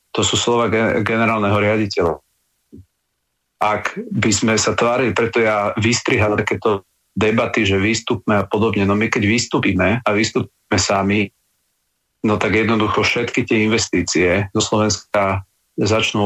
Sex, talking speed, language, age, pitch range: male, 130 wpm, Slovak, 40-59, 100-115 Hz